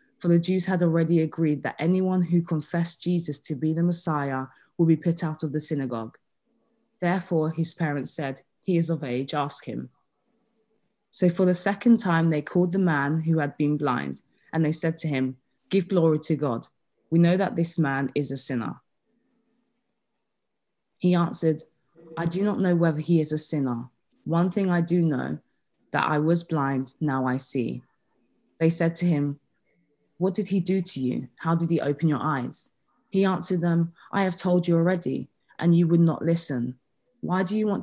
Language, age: English, 20-39